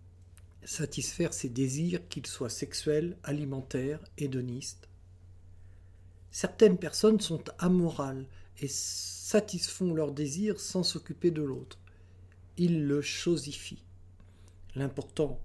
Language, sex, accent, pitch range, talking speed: French, male, French, 90-145 Hz, 95 wpm